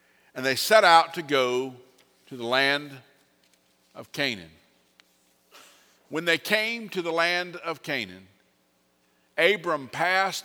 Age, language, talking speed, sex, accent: 50-69, English, 120 wpm, male, American